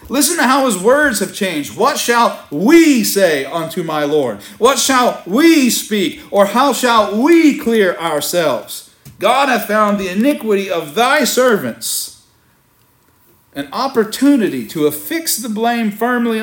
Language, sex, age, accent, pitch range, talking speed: English, male, 40-59, American, 135-210 Hz, 145 wpm